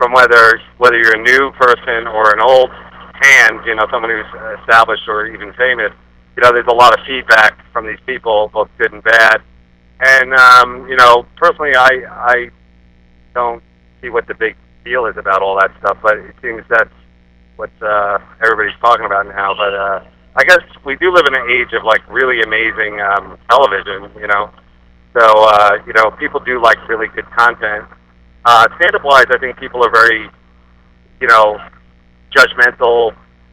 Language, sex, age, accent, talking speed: English, male, 40-59, American, 175 wpm